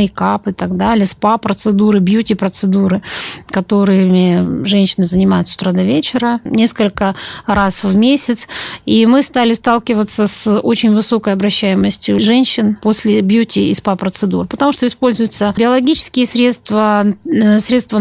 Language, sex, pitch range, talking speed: Russian, female, 200-245 Hz, 120 wpm